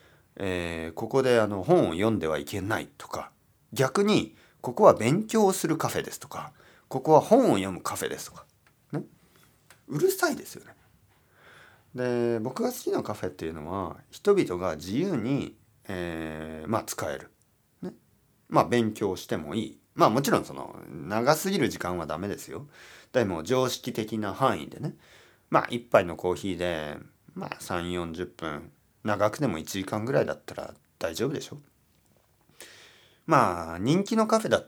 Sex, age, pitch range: male, 40-59, 90-125 Hz